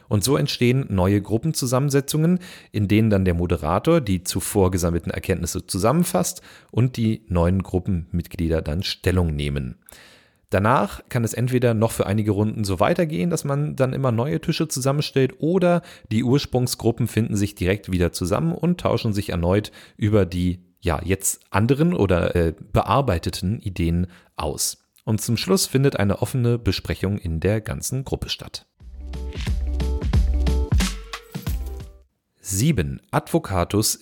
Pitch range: 90-125 Hz